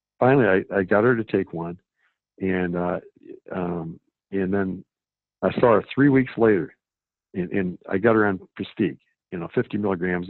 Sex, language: male, English